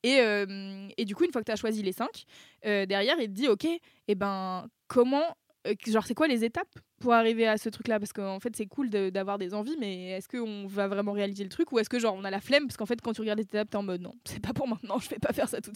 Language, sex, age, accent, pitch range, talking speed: French, female, 20-39, French, 205-240 Hz, 310 wpm